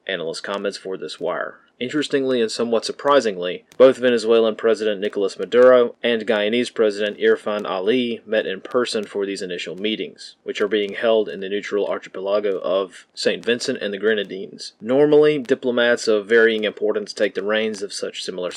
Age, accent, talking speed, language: 30-49, American, 165 wpm, English